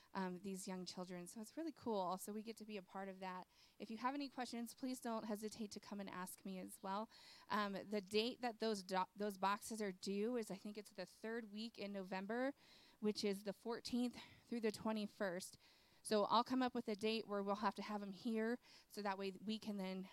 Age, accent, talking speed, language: 20-39, American, 235 wpm, English